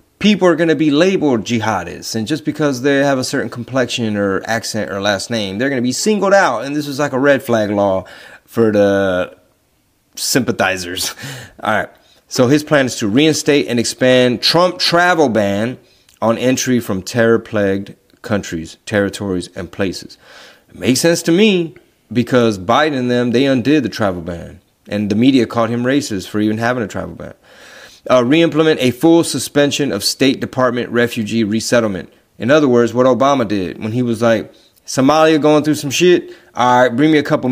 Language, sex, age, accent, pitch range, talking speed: English, male, 30-49, American, 105-140 Hz, 185 wpm